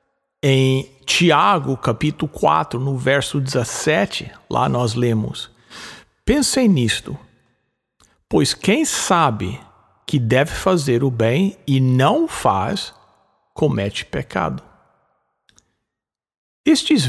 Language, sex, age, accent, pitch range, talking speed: English, male, 60-79, Brazilian, 120-190 Hz, 95 wpm